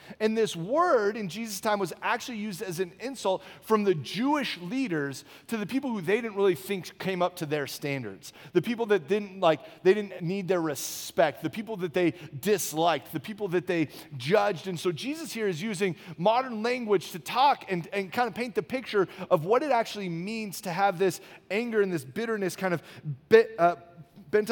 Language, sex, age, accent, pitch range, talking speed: English, male, 30-49, American, 170-220 Hz, 205 wpm